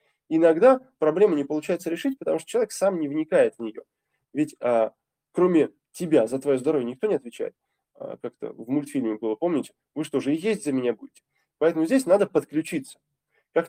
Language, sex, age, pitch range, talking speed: Russian, male, 20-39, 135-220 Hz, 175 wpm